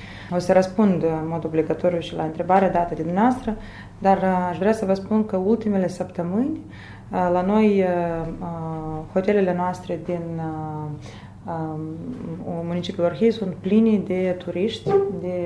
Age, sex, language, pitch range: 30-49, female, Romanian, 160-195 Hz